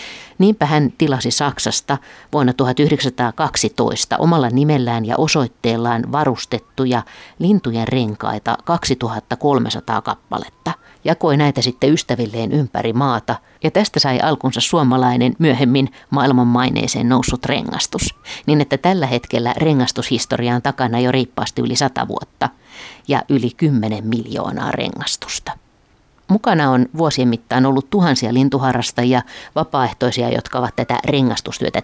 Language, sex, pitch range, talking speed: Finnish, female, 120-145 Hz, 115 wpm